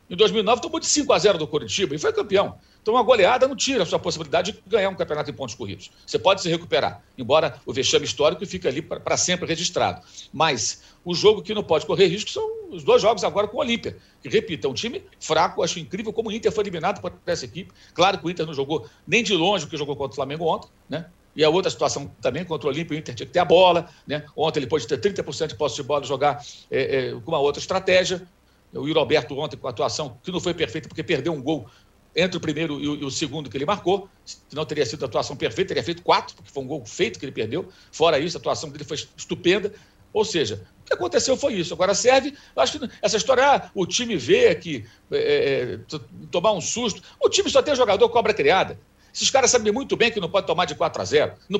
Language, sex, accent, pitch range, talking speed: Portuguese, male, Brazilian, 155-235 Hz, 250 wpm